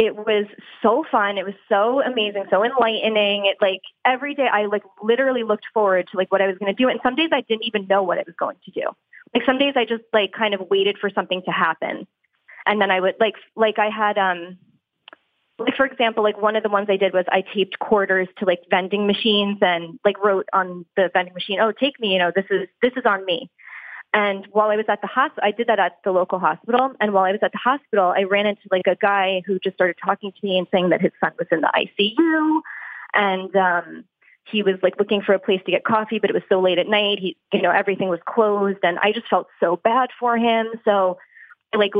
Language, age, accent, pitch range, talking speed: English, 20-39, American, 190-225 Hz, 250 wpm